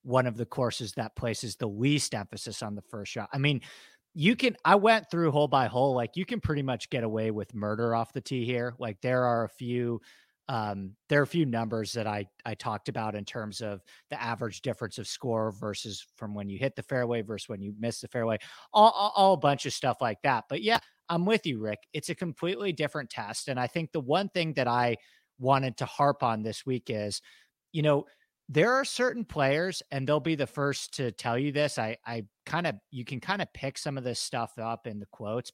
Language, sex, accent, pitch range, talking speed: English, male, American, 115-150 Hz, 235 wpm